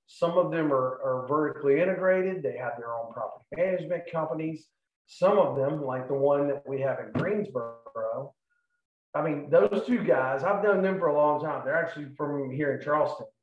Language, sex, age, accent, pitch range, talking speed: English, male, 40-59, American, 135-170 Hz, 190 wpm